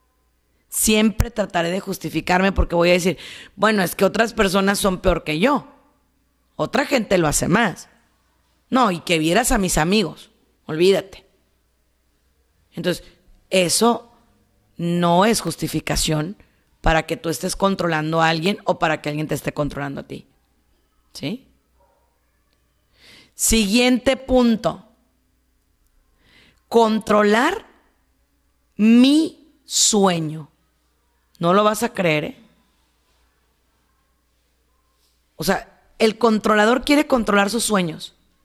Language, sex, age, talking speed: Spanish, female, 40-59, 110 wpm